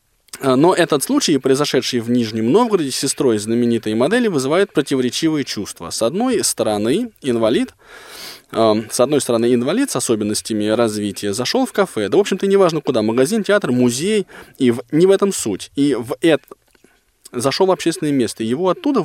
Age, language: 20-39, Russian